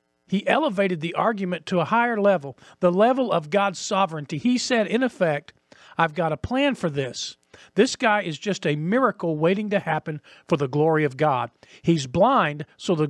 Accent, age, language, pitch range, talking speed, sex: American, 50-69, English, 145-210 Hz, 190 wpm, male